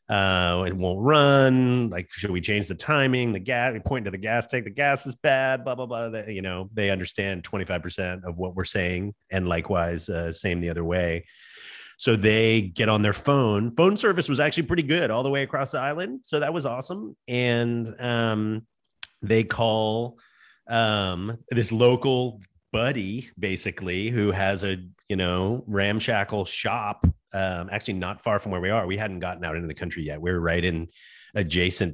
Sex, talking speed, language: male, 190 wpm, English